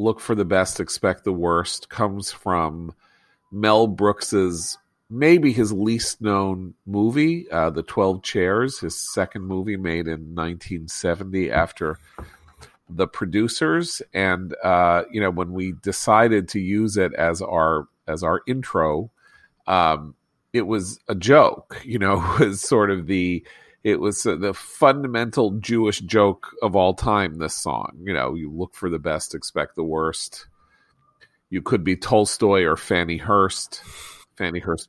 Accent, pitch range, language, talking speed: American, 85-105 Hz, English, 150 wpm